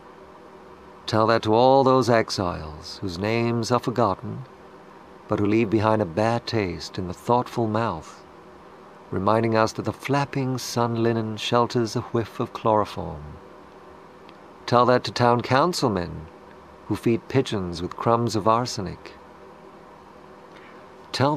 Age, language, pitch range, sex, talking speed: 50-69, Portuguese, 105-120 Hz, male, 130 wpm